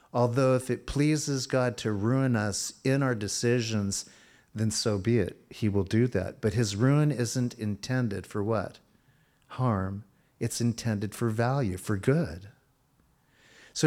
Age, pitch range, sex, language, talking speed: 50-69, 105-130 Hz, male, English, 145 wpm